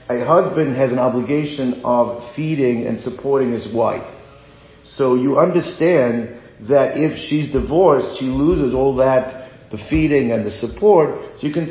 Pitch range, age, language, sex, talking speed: 130-155 Hz, 50-69, English, male, 155 wpm